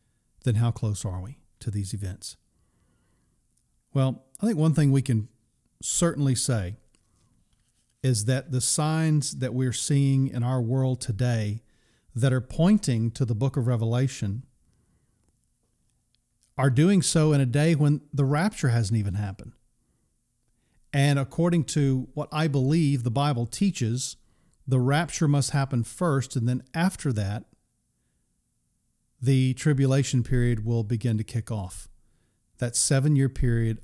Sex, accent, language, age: male, American, English, 40-59